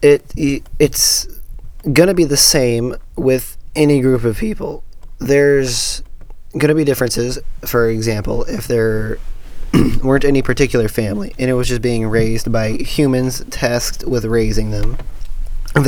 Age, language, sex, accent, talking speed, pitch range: 20-39, English, male, American, 135 wpm, 110-135 Hz